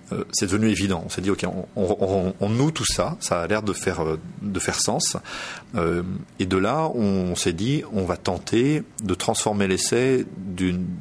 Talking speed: 205 wpm